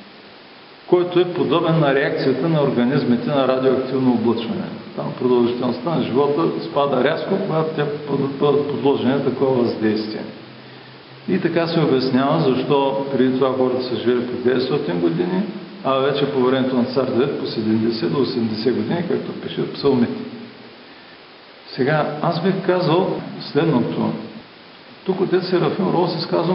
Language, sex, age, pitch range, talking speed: Bulgarian, male, 50-69, 125-165 Hz, 140 wpm